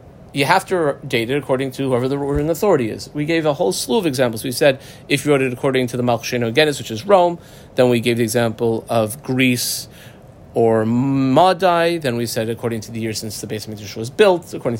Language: English